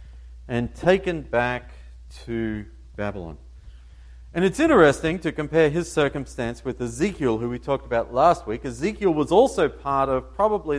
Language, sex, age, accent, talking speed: English, male, 40-59, Australian, 145 wpm